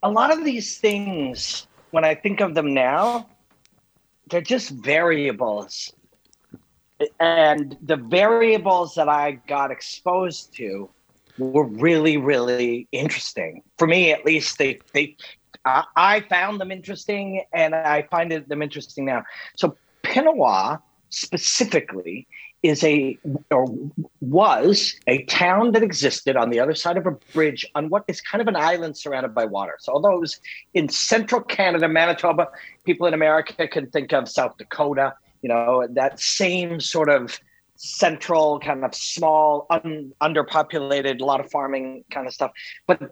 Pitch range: 140-185 Hz